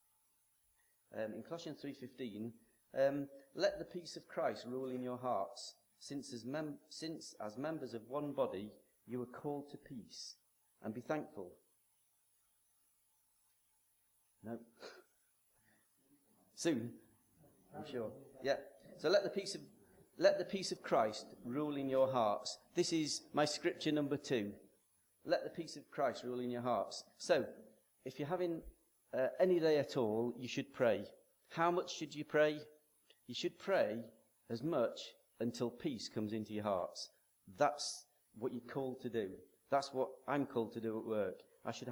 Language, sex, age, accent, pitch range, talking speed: English, male, 40-59, British, 115-145 Hz, 155 wpm